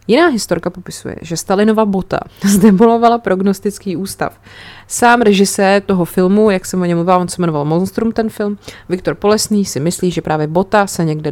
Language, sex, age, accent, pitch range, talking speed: Czech, female, 30-49, native, 170-200 Hz, 175 wpm